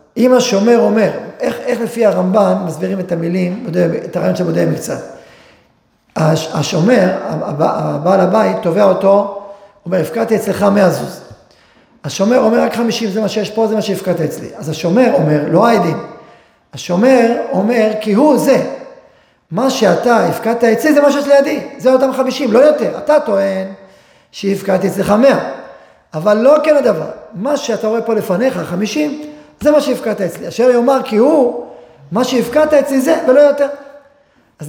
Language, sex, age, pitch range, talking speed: Hebrew, male, 40-59, 190-270 Hz, 165 wpm